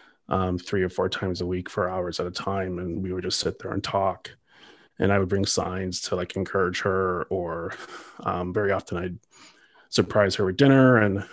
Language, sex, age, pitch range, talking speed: English, male, 30-49, 95-115 Hz, 205 wpm